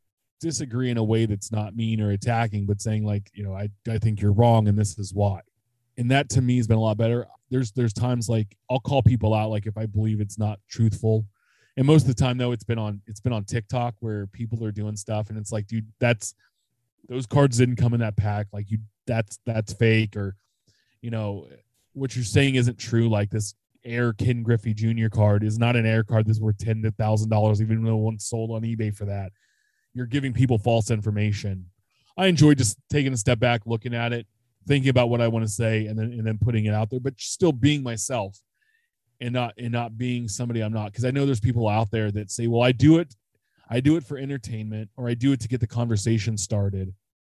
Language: English